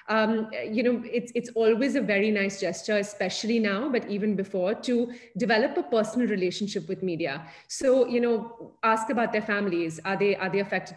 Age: 30-49